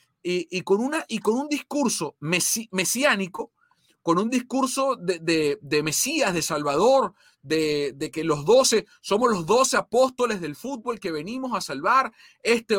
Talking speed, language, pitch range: 165 wpm, English, 170-240 Hz